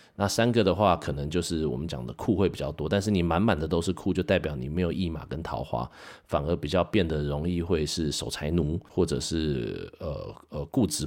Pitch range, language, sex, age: 80-95 Hz, Chinese, male, 30-49